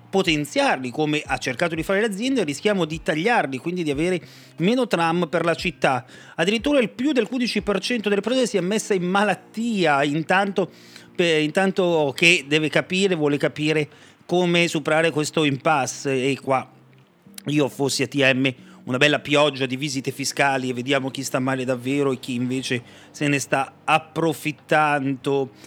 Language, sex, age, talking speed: Italian, male, 40-59, 155 wpm